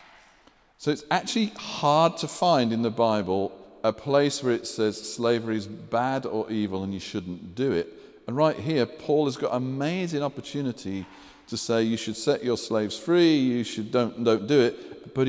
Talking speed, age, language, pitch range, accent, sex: 190 wpm, 50-69, English, 120-155 Hz, British, male